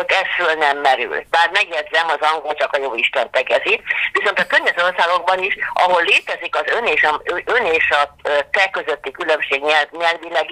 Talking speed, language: 170 wpm, Hungarian